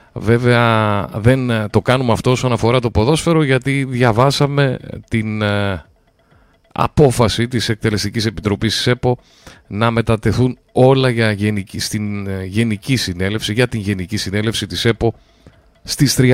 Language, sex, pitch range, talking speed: Greek, male, 100-130 Hz, 130 wpm